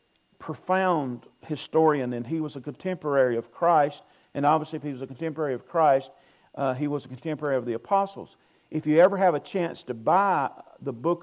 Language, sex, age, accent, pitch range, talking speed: English, male, 50-69, American, 135-175 Hz, 190 wpm